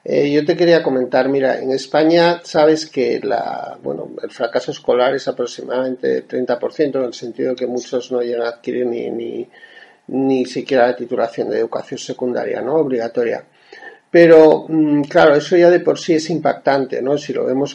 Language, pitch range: Spanish, 125-155 Hz